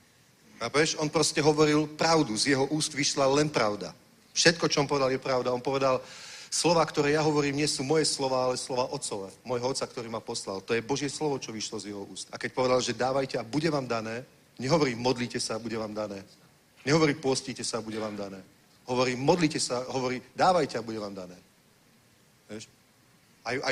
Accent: native